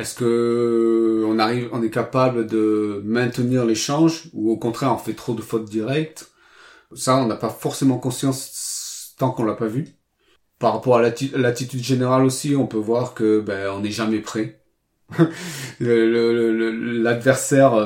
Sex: male